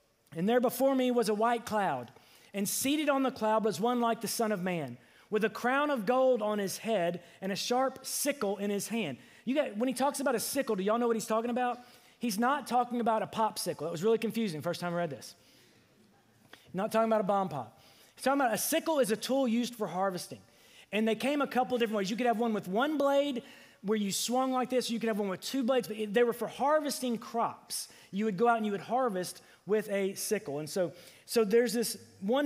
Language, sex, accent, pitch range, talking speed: English, male, American, 205-260 Hz, 245 wpm